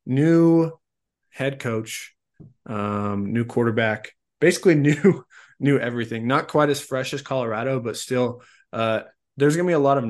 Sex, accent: male, American